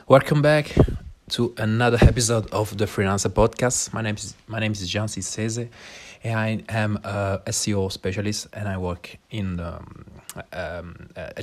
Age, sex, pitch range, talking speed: 30-49, male, 90-110 Hz, 145 wpm